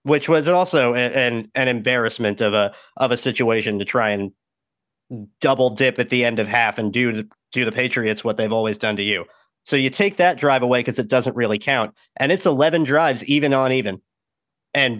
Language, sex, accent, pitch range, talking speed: English, male, American, 125-160 Hz, 210 wpm